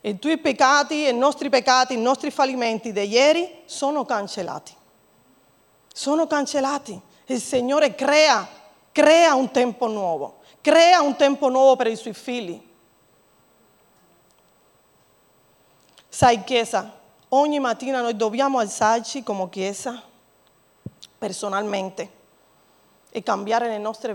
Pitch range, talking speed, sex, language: 215-270 Hz, 110 wpm, female, Italian